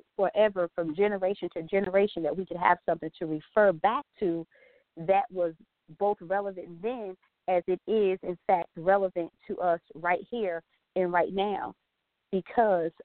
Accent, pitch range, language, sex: American, 175-210 Hz, English, female